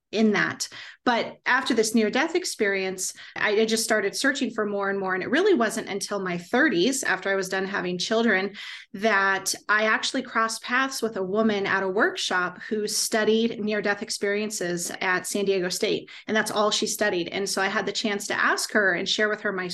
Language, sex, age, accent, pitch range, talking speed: English, female, 30-49, American, 190-225 Hz, 200 wpm